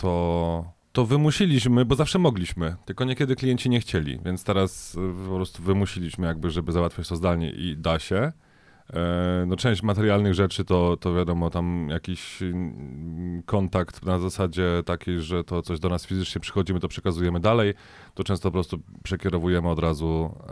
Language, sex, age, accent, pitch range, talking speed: Polish, male, 30-49, native, 85-100 Hz, 160 wpm